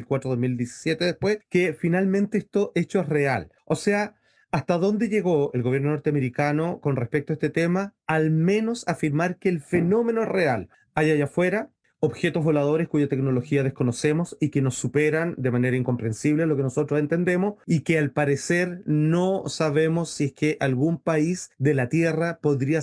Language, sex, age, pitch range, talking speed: Spanish, male, 30-49, 140-175 Hz, 170 wpm